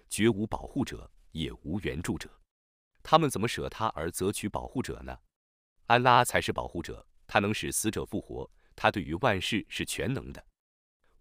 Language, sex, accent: Chinese, male, native